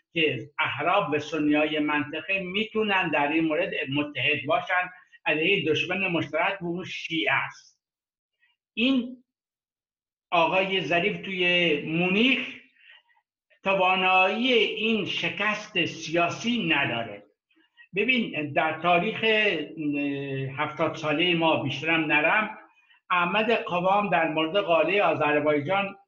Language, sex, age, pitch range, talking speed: Persian, male, 60-79, 155-210 Hz, 95 wpm